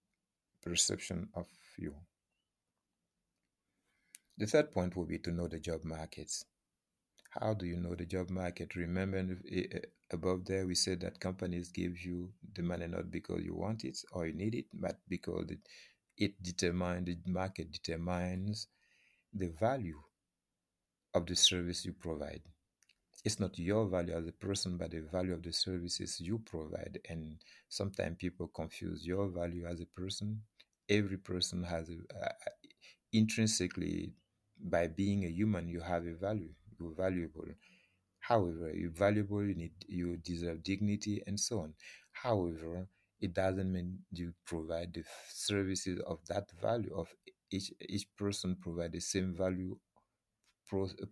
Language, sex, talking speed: English, male, 145 wpm